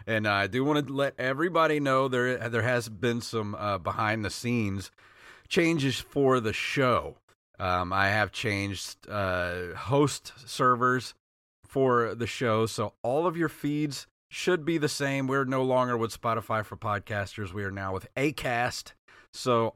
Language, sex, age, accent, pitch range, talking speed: English, male, 30-49, American, 95-130 Hz, 160 wpm